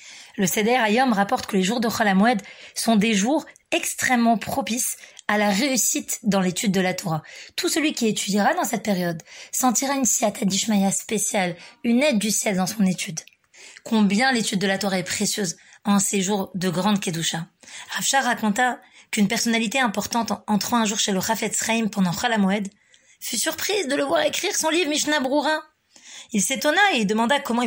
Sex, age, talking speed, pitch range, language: female, 20-39, 180 wpm, 195-245 Hz, French